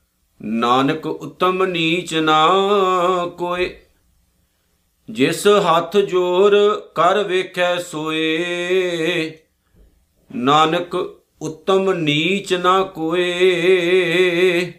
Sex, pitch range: male, 140-180 Hz